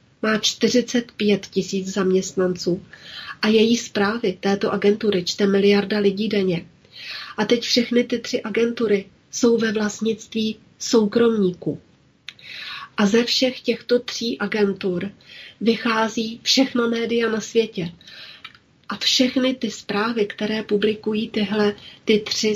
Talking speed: 115 wpm